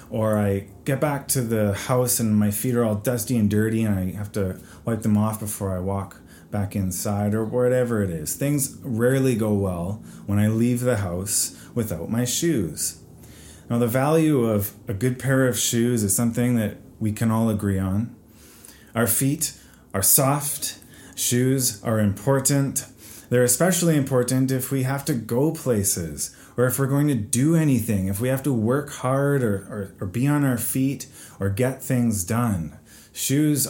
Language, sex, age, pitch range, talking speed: English, male, 30-49, 105-135 Hz, 180 wpm